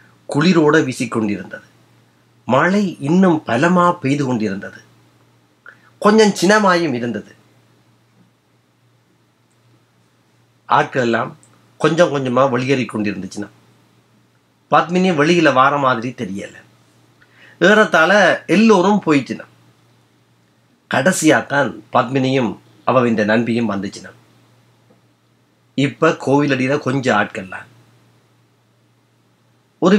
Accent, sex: native, male